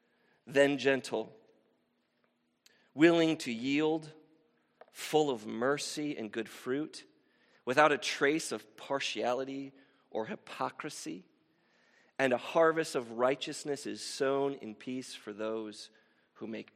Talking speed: 110 wpm